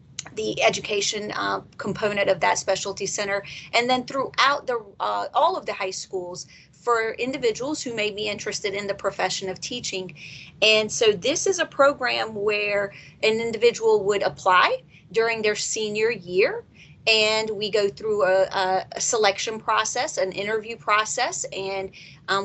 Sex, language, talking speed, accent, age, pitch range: female, English, 150 wpm, American, 30-49, 195-230 Hz